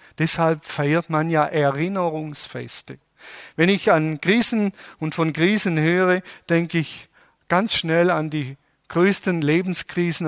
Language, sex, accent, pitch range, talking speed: German, male, German, 140-175 Hz, 125 wpm